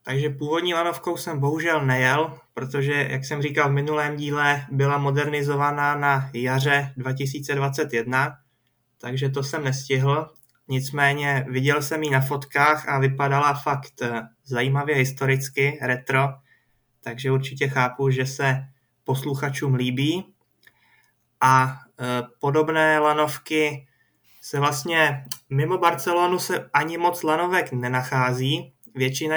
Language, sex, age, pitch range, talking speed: Czech, male, 20-39, 130-150 Hz, 110 wpm